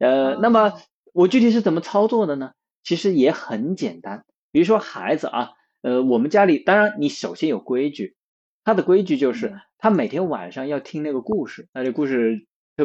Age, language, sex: 20-39, Chinese, male